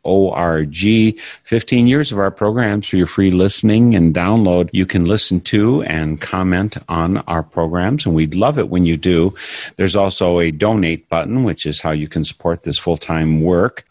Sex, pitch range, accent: male, 80-100 Hz, American